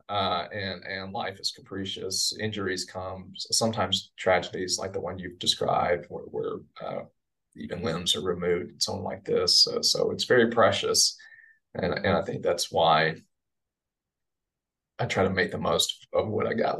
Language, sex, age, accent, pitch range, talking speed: English, male, 30-49, American, 95-125 Hz, 170 wpm